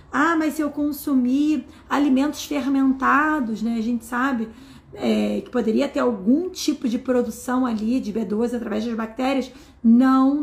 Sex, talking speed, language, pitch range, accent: female, 145 wpm, Portuguese, 235-290 Hz, Brazilian